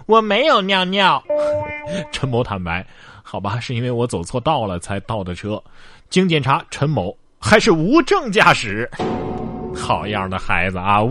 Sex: male